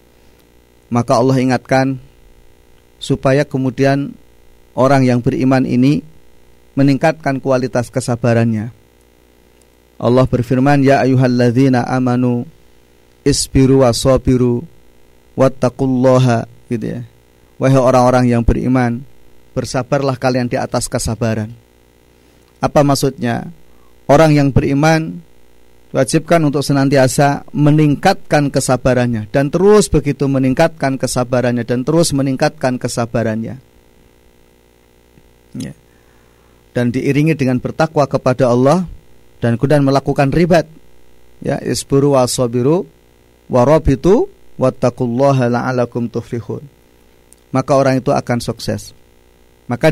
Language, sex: Indonesian, male